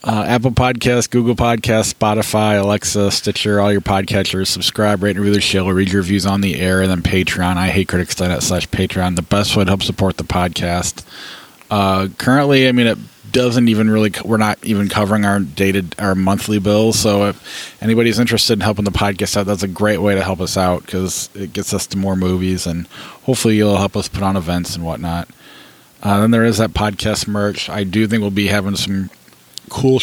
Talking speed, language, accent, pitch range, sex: 210 wpm, English, American, 95-110 Hz, male